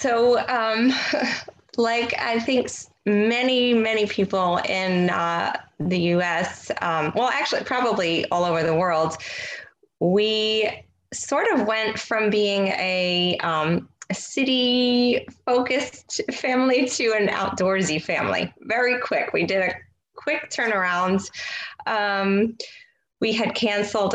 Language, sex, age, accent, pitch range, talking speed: English, female, 20-39, American, 170-230 Hz, 115 wpm